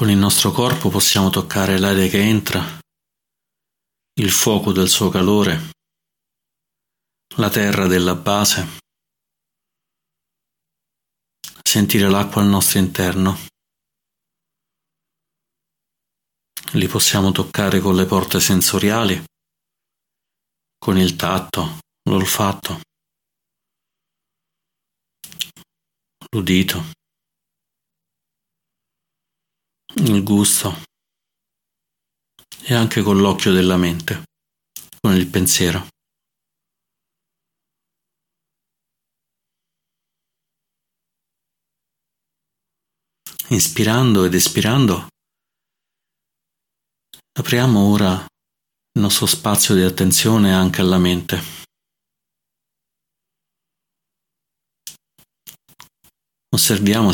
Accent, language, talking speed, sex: native, Italian, 65 wpm, male